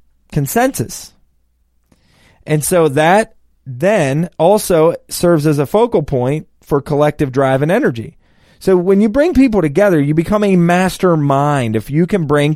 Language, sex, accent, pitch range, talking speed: English, male, American, 130-185 Hz, 150 wpm